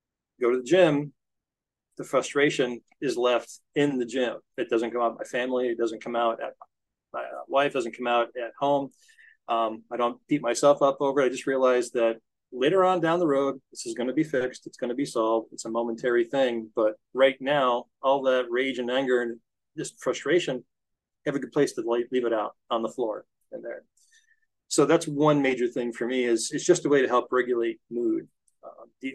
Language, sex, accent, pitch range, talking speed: English, male, American, 120-140 Hz, 210 wpm